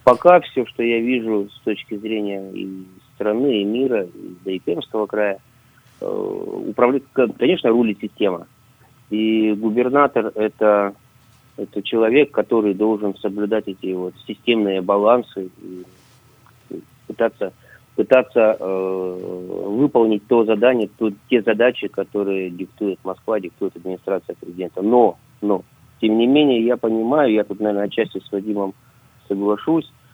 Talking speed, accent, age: 125 wpm, native, 30-49